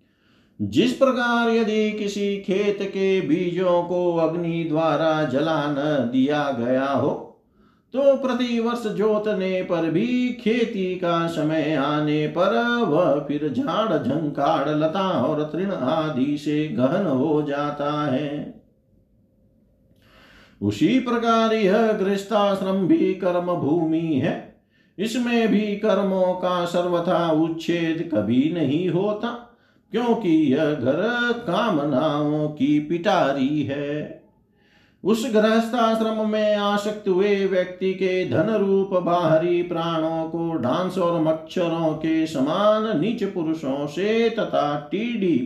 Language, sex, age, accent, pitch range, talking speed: Hindi, male, 50-69, native, 155-215 Hz, 110 wpm